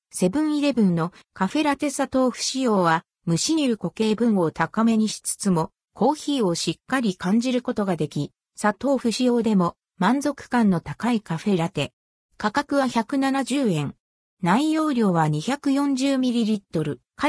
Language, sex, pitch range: Japanese, female, 180-260 Hz